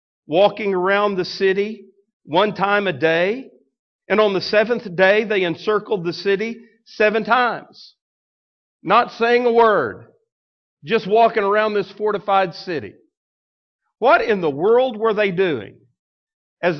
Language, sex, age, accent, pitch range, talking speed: English, male, 50-69, American, 180-225 Hz, 130 wpm